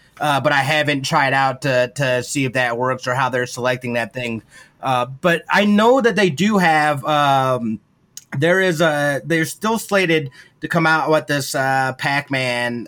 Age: 30-49